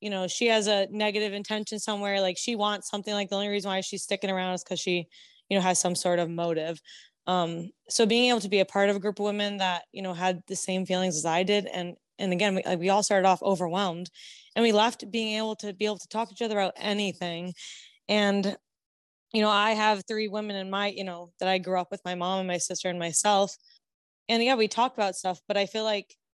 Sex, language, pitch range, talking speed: female, English, 185-210 Hz, 250 wpm